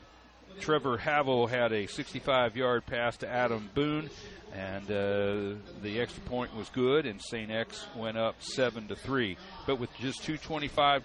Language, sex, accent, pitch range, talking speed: English, male, American, 110-145 Hz, 145 wpm